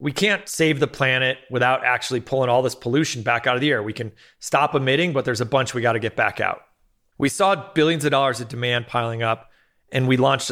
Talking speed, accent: 240 wpm, American